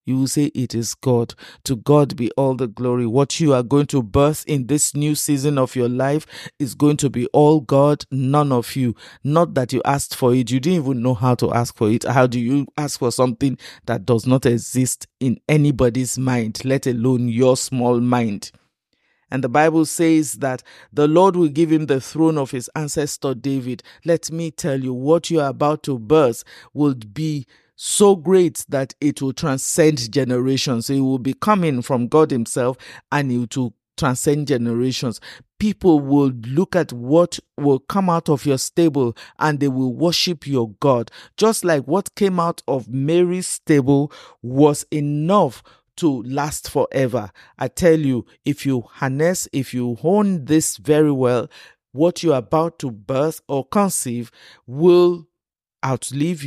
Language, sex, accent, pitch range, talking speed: English, male, Nigerian, 125-155 Hz, 175 wpm